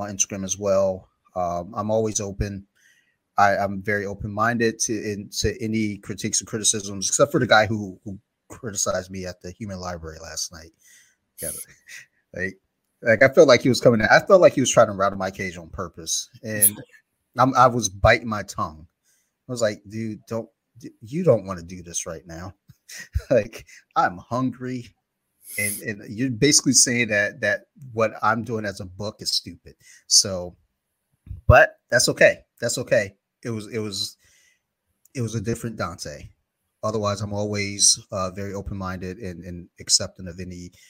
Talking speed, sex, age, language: 175 wpm, male, 30-49, English